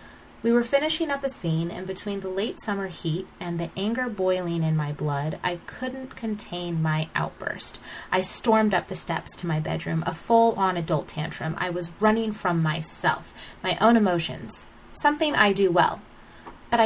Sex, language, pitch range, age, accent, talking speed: female, English, 165-205 Hz, 30-49, American, 175 wpm